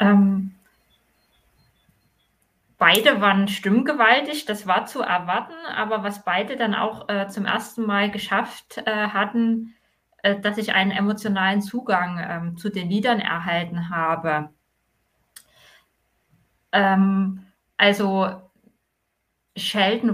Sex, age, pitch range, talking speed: female, 20-39, 190-225 Hz, 105 wpm